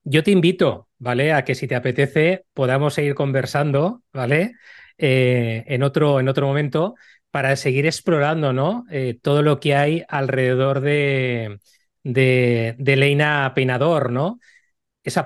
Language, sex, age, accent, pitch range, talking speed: Spanish, male, 30-49, Spanish, 140-170 Hz, 135 wpm